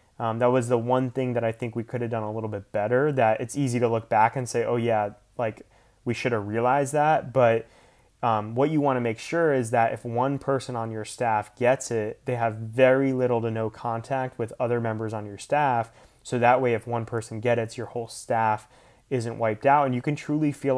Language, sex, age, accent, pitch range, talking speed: English, male, 20-39, American, 115-130 Hz, 240 wpm